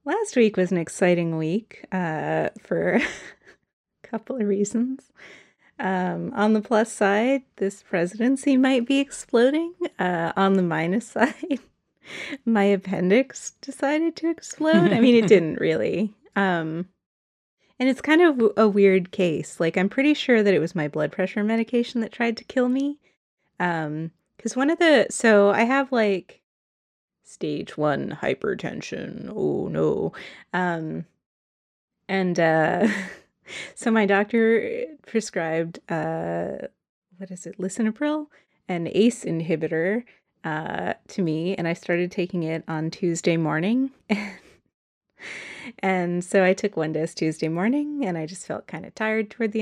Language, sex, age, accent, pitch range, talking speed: English, female, 30-49, American, 170-235 Hz, 145 wpm